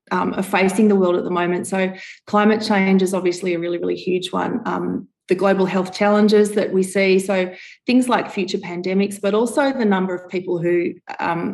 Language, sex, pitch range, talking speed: English, female, 180-205 Hz, 205 wpm